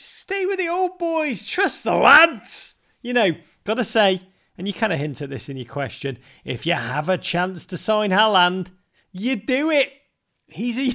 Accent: British